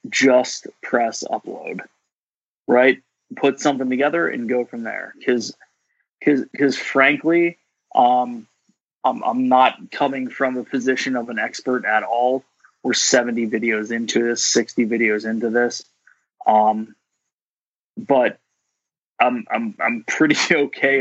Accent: American